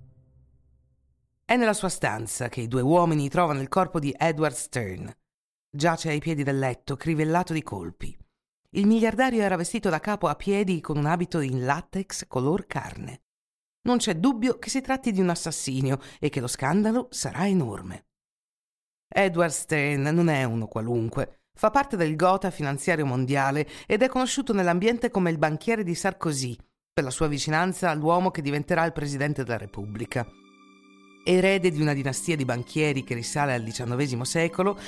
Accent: native